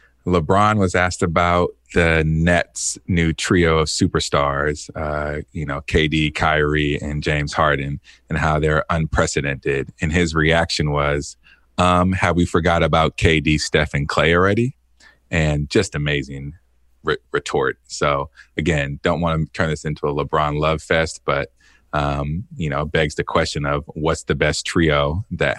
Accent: American